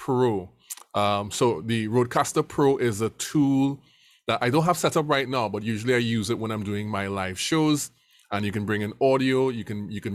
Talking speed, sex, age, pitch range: 225 wpm, male, 20-39, 105-125 Hz